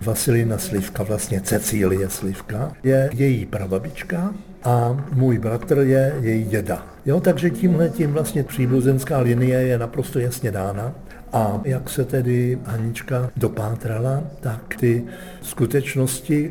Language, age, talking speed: Czech, 60-79, 125 wpm